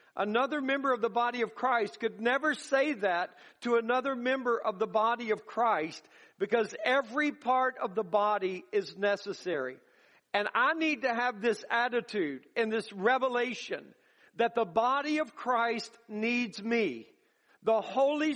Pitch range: 225-270 Hz